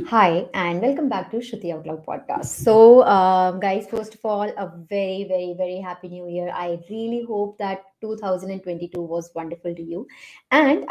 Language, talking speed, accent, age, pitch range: English, 170 wpm, Indian, 30-49, 180-250 Hz